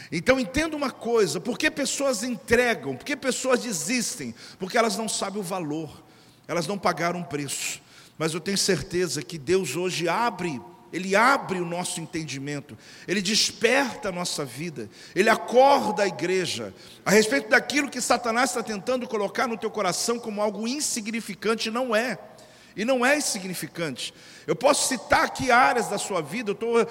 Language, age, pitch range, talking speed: Portuguese, 50-69, 190-240 Hz, 165 wpm